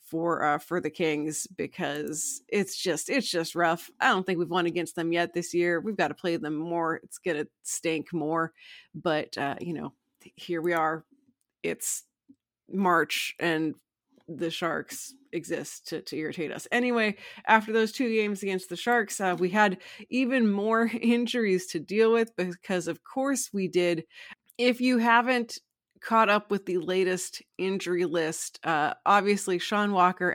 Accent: American